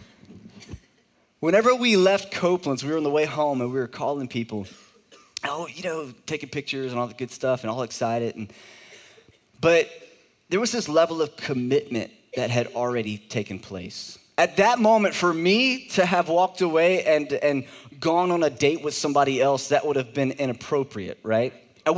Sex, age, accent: male, 20-39, American